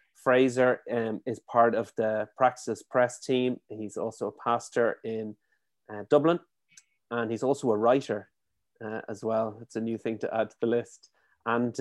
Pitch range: 110-130 Hz